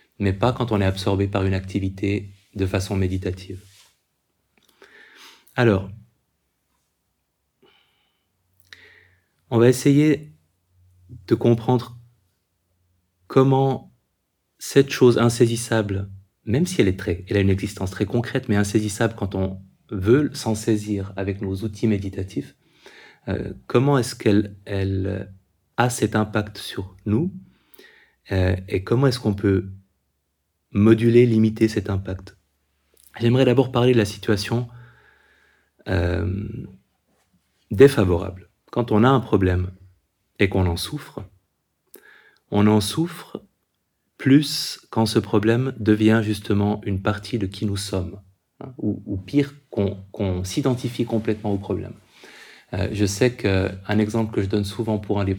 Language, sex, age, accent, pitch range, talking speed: French, male, 30-49, French, 95-115 Hz, 130 wpm